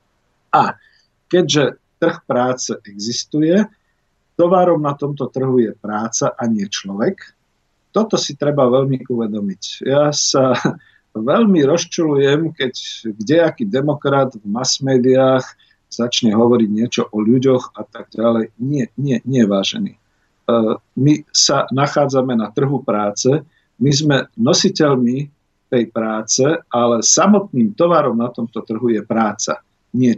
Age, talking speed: 50-69, 120 wpm